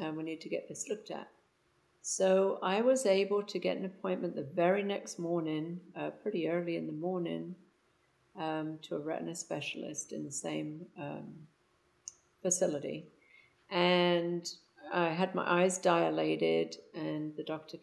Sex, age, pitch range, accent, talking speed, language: female, 50-69, 150-180 Hz, British, 150 wpm, English